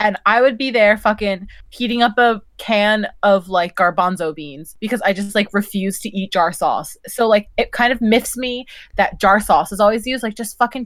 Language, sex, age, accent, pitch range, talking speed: English, female, 20-39, American, 190-240 Hz, 215 wpm